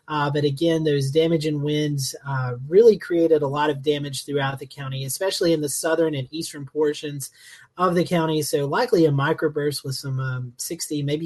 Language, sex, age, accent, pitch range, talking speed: English, male, 30-49, American, 150-175 Hz, 185 wpm